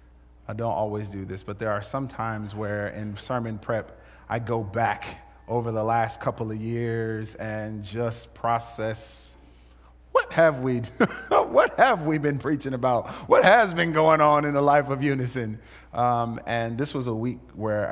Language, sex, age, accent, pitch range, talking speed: English, male, 30-49, American, 100-130 Hz, 175 wpm